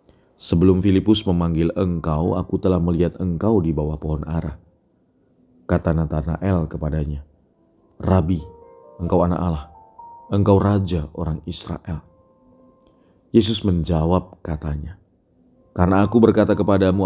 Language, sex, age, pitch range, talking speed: Indonesian, male, 30-49, 80-95 Hz, 105 wpm